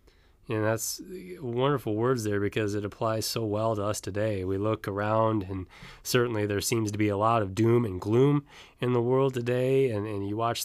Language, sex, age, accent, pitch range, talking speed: English, male, 20-39, American, 105-125 Hz, 205 wpm